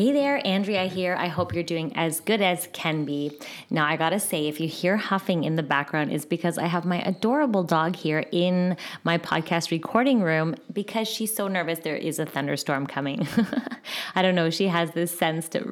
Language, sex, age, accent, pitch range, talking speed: English, female, 20-39, American, 160-190 Hz, 210 wpm